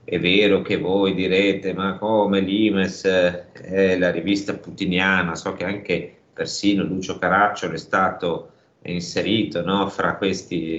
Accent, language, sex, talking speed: native, Italian, male, 130 wpm